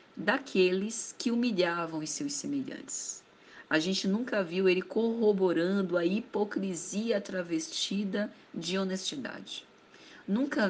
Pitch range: 175-230 Hz